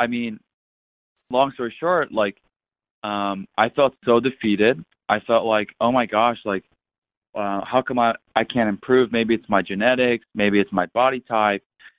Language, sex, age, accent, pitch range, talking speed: English, male, 20-39, American, 100-120 Hz, 170 wpm